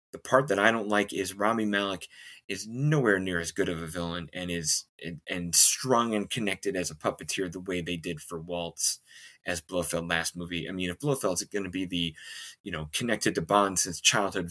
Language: English